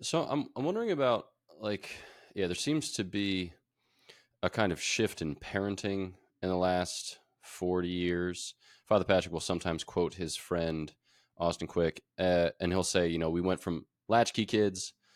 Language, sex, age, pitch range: English, male, 20-39, 80-95 Hz